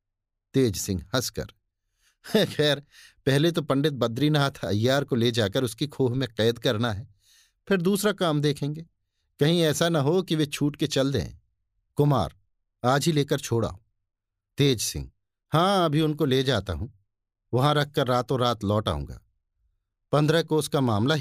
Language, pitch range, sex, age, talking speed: Hindi, 100-145 Hz, male, 50-69, 155 wpm